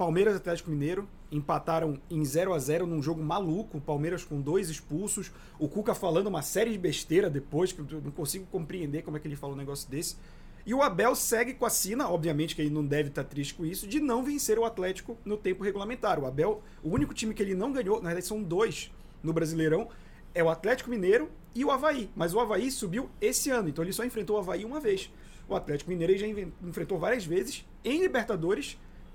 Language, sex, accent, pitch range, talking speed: Portuguese, male, Brazilian, 170-235 Hz, 220 wpm